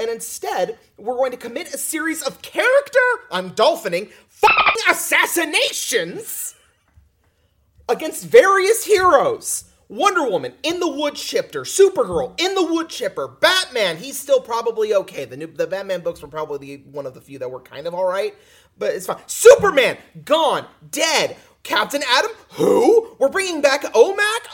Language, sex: English, male